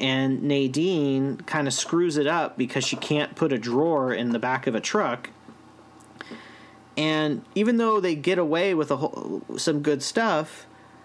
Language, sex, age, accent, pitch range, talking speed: English, male, 40-59, American, 120-155 Hz, 160 wpm